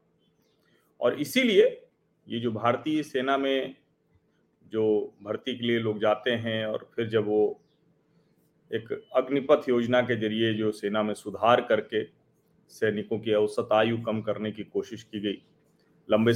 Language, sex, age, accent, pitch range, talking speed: Hindi, male, 40-59, native, 110-160 Hz, 145 wpm